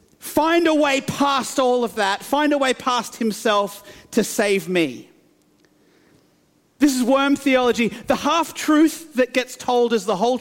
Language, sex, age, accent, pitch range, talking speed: English, male, 40-59, Australian, 190-250 Hz, 155 wpm